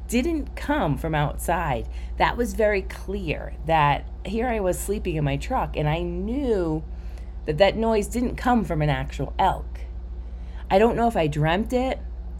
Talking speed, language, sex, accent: 170 wpm, English, female, American